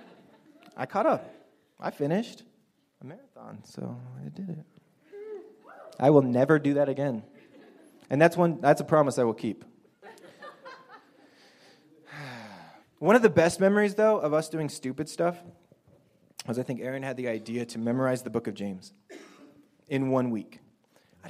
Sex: male